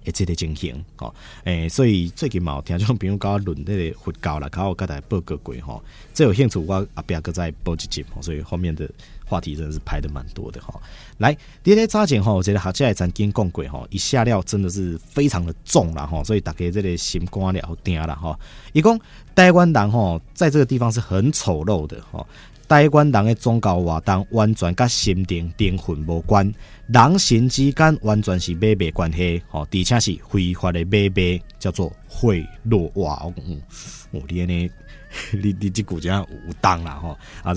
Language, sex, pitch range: Chinese, male, 85-110 Hz